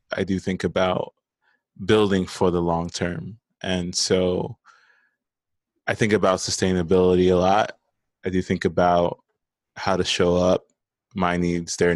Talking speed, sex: 140 wpm, male